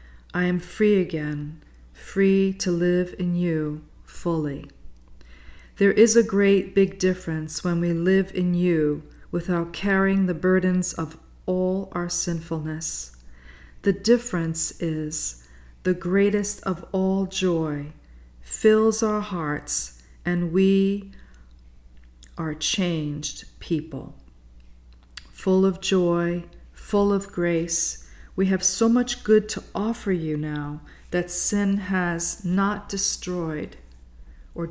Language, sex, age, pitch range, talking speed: English, female, 40-59, 145-190 Hz, 115 wpm